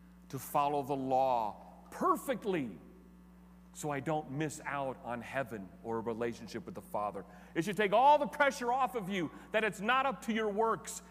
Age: 40-59